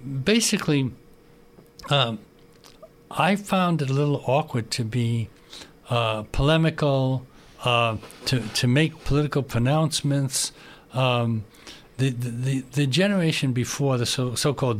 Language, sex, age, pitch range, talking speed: English, male, 60-79, 125-160 Hz, 105 wpm